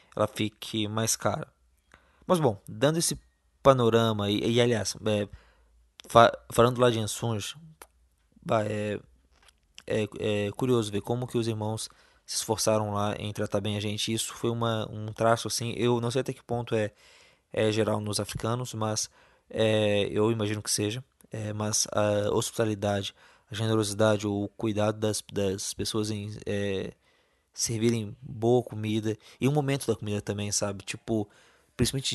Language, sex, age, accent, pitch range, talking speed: Portuguese, male, 20-39, Brazilian, 105-120 Hz, 155 wpm